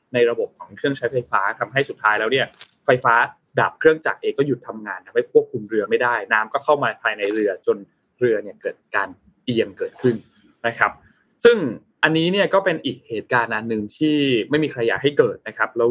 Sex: male